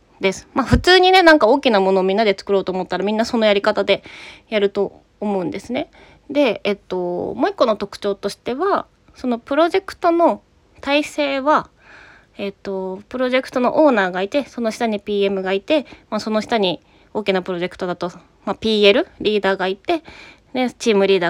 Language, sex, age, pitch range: Japanese, female, 20-39, 195-280 Hz